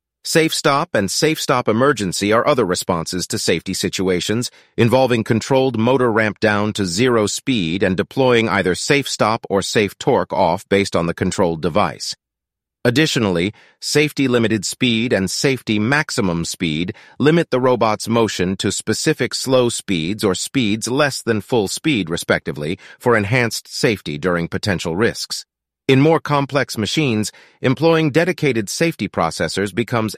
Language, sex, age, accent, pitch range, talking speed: English, male, 40-59, American, 95-130 Hz, 145 wpm